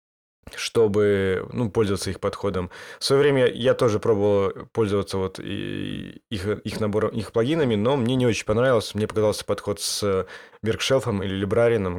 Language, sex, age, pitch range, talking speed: Russian, male, 20-39, 100-120 Hz, 145 wpm